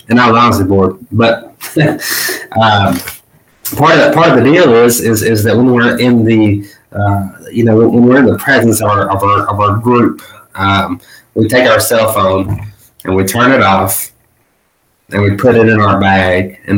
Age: 20-39